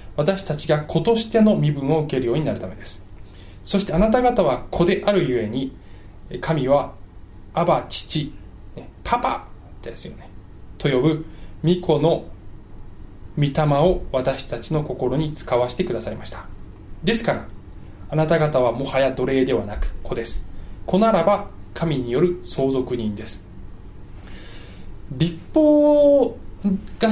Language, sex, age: Japanese, male, 20-39